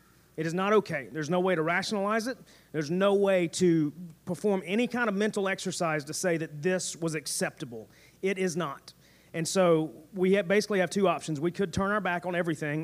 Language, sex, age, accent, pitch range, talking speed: English, male, 30-49, American, 155-185 Hz, 200 wpm